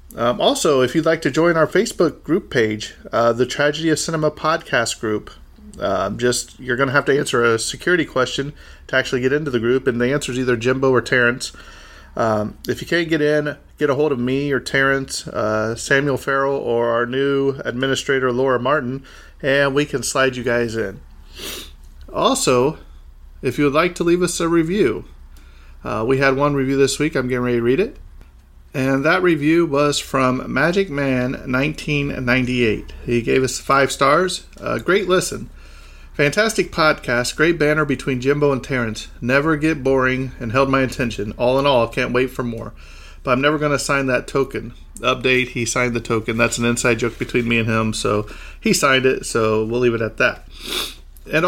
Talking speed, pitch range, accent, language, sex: 190 wpm, 115-145 Hz, American, English, male